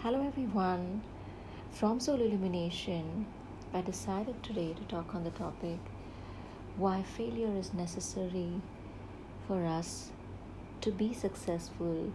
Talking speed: 110 wpm